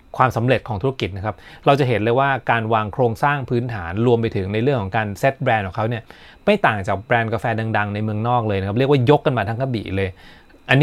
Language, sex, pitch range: Thai, male, 100-135 Hz